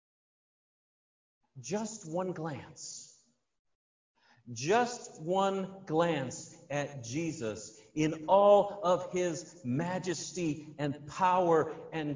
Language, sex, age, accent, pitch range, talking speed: English, male, 50-69, American, 140-200 Hz, 80 wpm